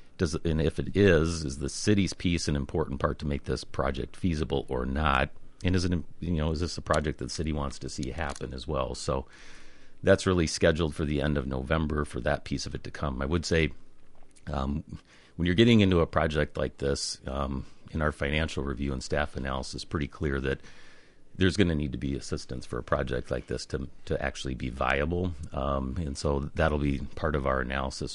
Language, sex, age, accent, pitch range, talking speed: English, male, 40-59, American, 70-80 Hz, 215 wpm